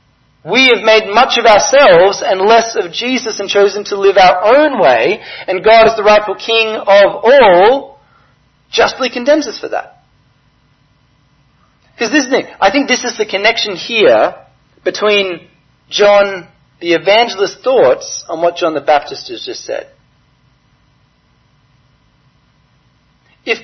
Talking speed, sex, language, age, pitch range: 130 wpm, male, English, 40-59, 160-230 Hz